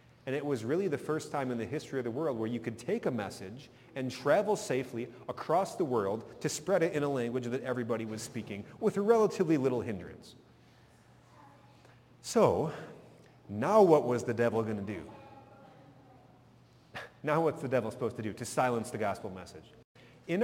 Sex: male